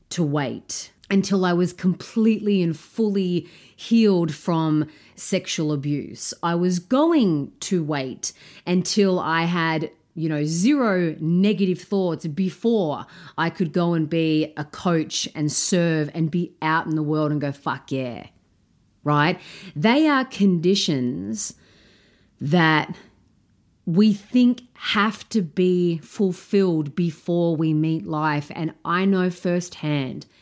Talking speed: 125 wpm